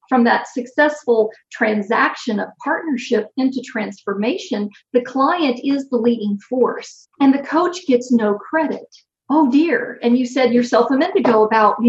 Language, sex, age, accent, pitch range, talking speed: English, female, 50-69, American, 225-270 Hz, 155 wpm